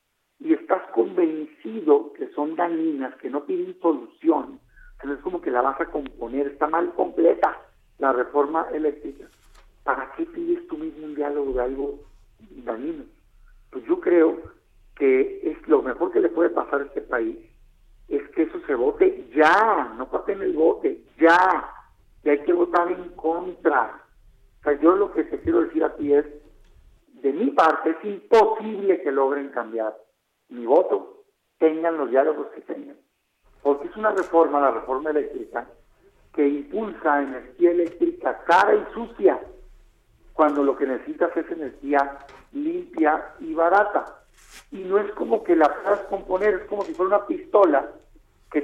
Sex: male